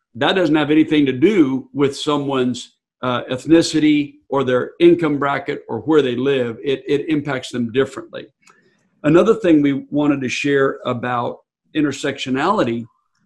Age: 50-69